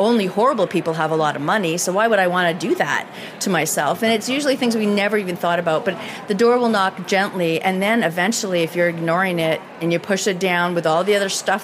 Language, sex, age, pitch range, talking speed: English, female, 30-49, 175-225 Hz, 260 wpm